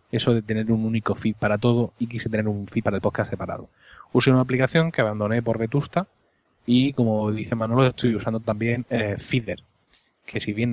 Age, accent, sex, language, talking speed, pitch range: 20-39, Spanish, male, Spanish, 200 wpm, 105-130 Hz